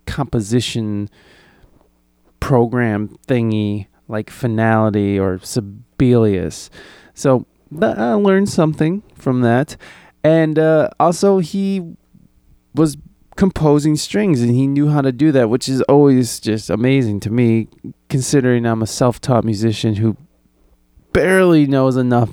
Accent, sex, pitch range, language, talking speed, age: American, male, 110-145 Hz, English, 120 wpm, 20-39